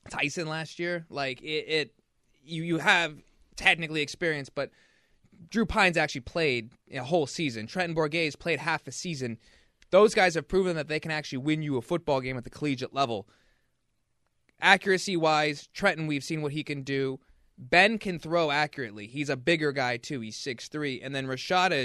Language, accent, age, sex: English, American, 20-39, male